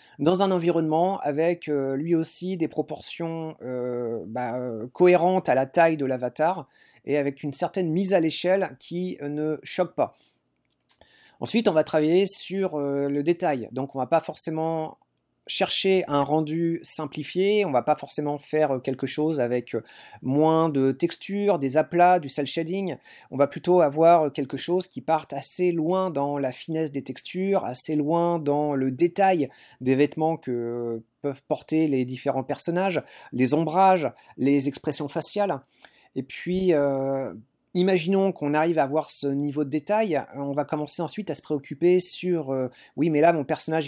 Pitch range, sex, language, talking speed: 140-175 Hz, male, French, 165 wpm